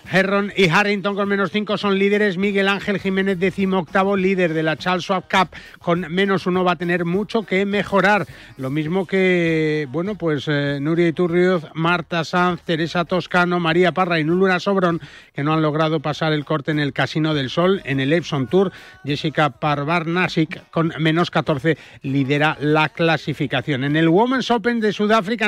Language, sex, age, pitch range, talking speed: Spanish, male, 40-59, 145-185 Hz, 175 wpm